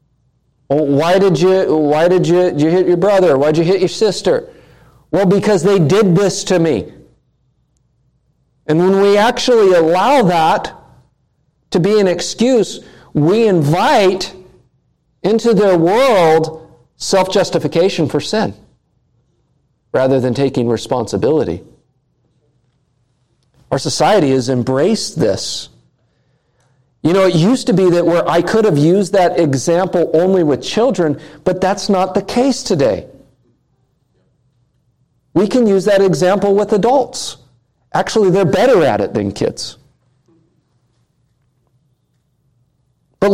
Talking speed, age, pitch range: 125 wpm, 50-69, 135-190 Hz